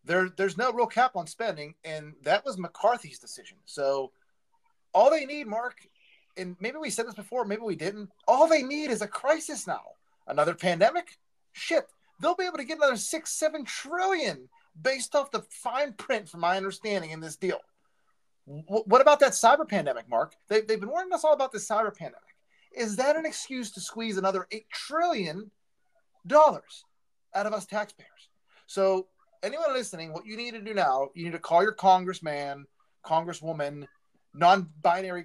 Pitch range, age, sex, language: 170-260 Hz, 30-49, male, English